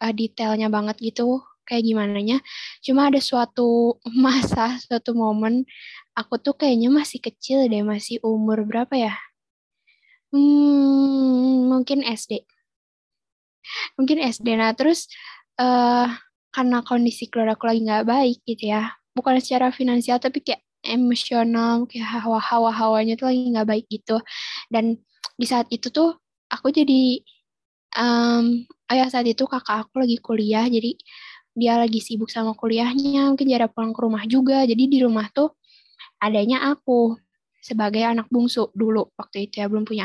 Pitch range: 225-265 Hz